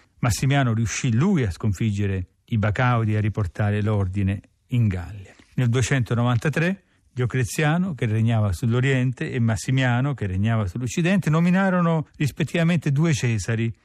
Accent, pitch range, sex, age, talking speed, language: native, 105-135 Hz, male, 40-59, 120 wpm, Italian